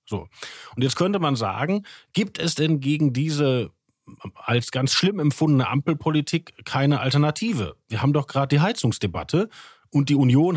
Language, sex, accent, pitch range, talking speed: German, male, German, 125-160 Hz, 155 wpm